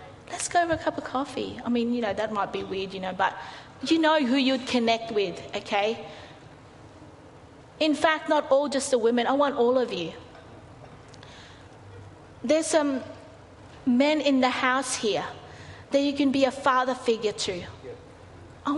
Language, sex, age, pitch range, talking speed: English, female, 30-49, 200-270 Hz, 170 wpm